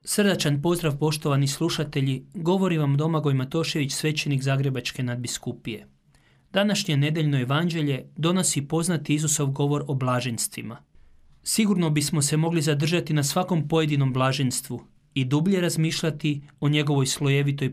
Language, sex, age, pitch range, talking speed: Croatian, male, 30-49, 140-180 Hz, 120 wpm